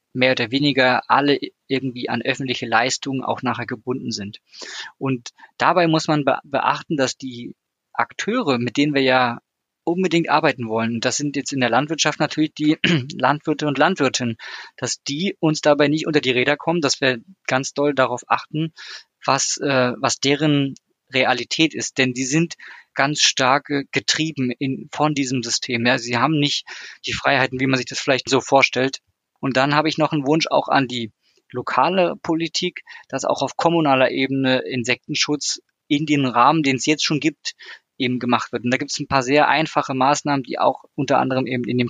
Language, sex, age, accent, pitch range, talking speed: German, male, 20-39, German, 125-150 Hz, 180 wpm